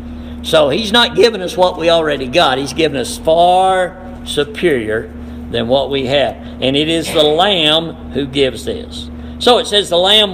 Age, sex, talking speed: 60-79, male, 180 wpm